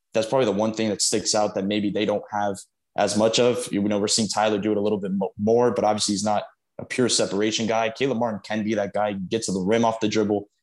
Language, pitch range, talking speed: English, 105-115 Hz, 270 wpm